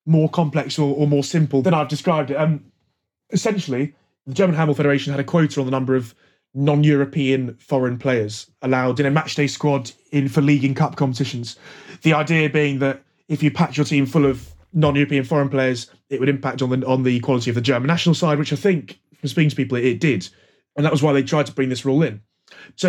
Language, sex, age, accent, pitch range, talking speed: English, male, 20-39, British, 130-150 Hz, 225 wpm